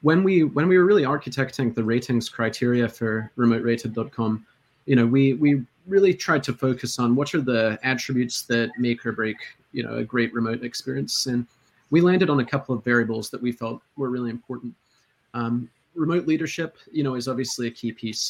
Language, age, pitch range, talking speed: English, 30-49, 115-135 Hz, 195 wpm